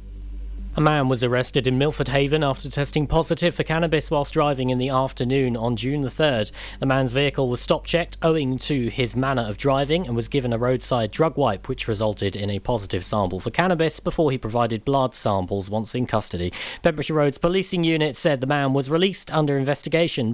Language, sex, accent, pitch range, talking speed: English, male, British, 115-155 Hz, 195 wpm